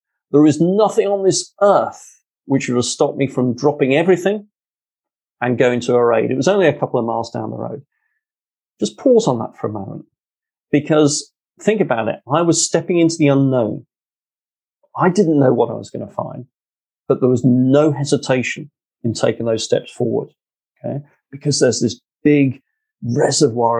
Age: 30-49